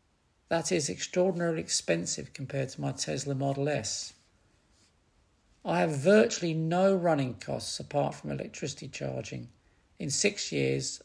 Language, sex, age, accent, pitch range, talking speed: English, male, 50-69, British, 115-155 Hz, 125 wpm